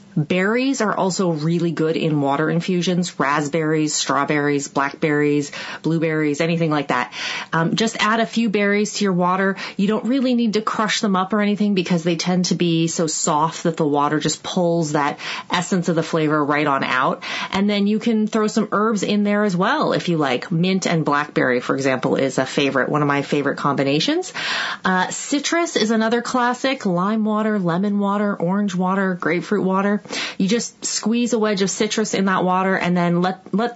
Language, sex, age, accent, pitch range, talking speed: English, female, 30-49, American, 160-210 Hz, 190 wpm